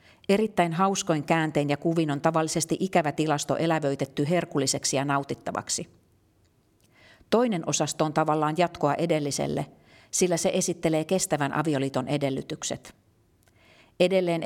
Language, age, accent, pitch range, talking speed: Finnish, 50-69, native, 140-165 Hz, 110 wpm